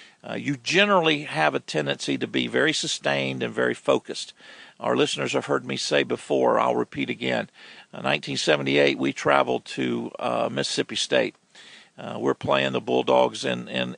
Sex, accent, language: male, American, English